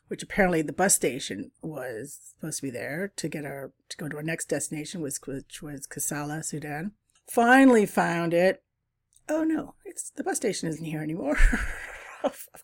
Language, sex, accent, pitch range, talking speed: English, female, American, 160-225 Hz, 170 wpm